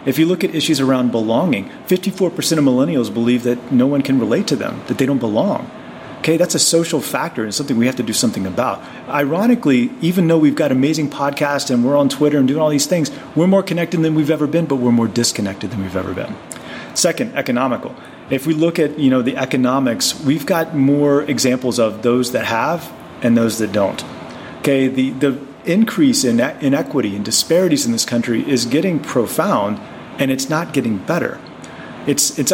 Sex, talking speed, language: male, 200 wpm, English